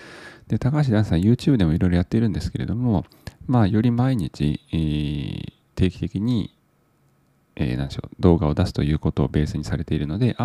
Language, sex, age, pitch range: Japanese, male, 40-59, 80-115 Hz